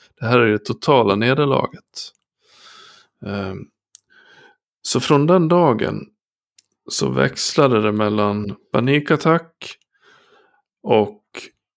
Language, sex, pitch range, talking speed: Swedish, male, 105-135 Hz, 80 wpm